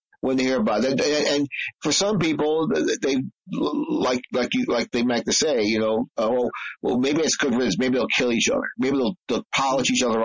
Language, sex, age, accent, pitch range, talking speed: English, male, 50-69, American, 115-185 Hz, 230 wpm